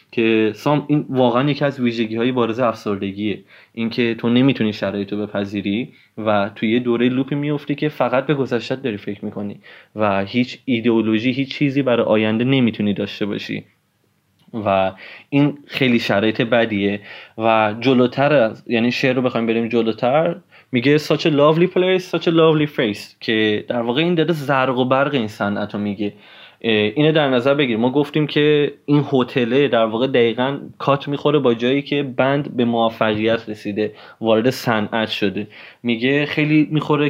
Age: 20-39